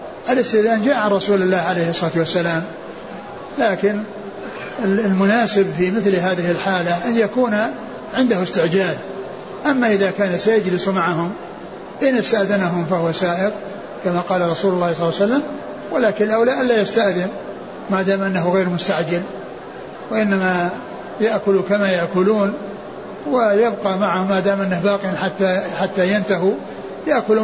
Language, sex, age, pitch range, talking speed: Arabic, male, 60-79, 185-215 Hz, 125 wpm